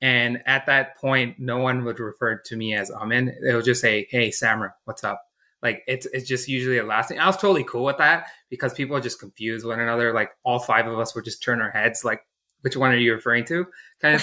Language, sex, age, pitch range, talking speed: English, male, 20-39, 110-135 Hz, 250 wpm